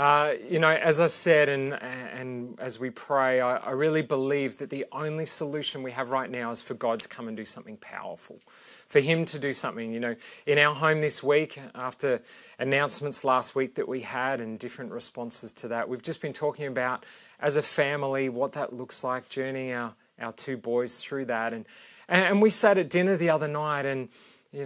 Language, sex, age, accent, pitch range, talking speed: English, male, 30-49, Australian, 125-150 Hz, 210 wpm